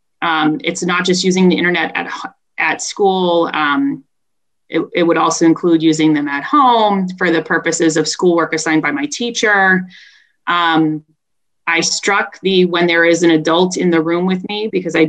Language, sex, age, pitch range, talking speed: English, female, 20-39, 165-195 Hz, 180 wpm